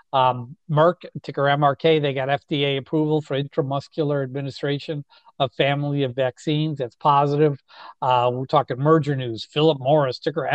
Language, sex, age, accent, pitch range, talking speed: English, male, 50-69, American, 135-160 Hz, 140 wpm